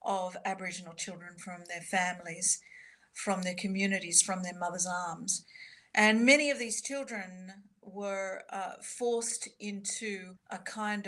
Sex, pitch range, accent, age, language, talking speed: female, 190-220 Hz, Australian, 50-69, English, 130 wpm